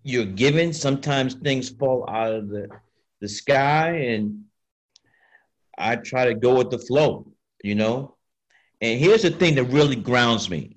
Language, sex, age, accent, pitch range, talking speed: English, male, 50-69, American, 105-130 Hz, 155 wpm